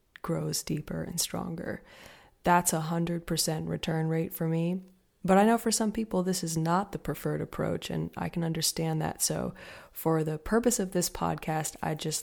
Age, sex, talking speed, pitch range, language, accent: 20-39, female, 185 wpm, 160-180 Hz, English, American